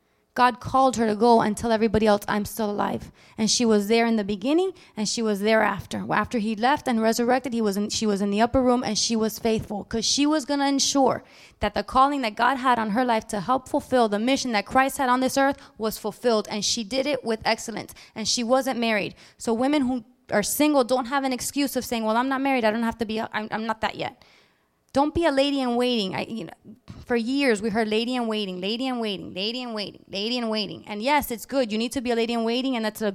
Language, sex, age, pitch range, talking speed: English, female, 20-39, 225-275 Hz, 260 wpm